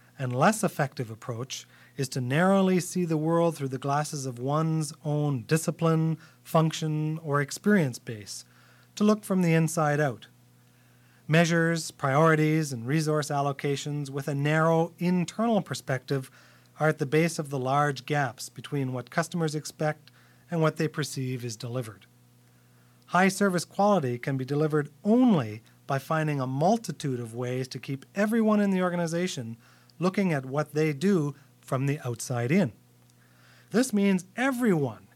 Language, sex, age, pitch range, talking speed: English, male, 40-59, 130-170 Hz, 145 wpm